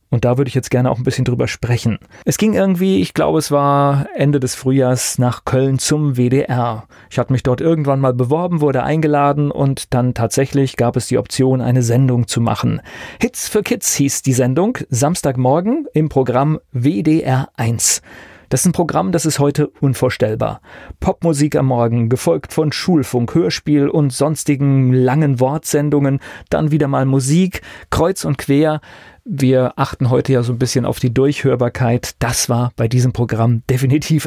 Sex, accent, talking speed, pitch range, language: male, German, 170 wpm, 125-150 Hz, German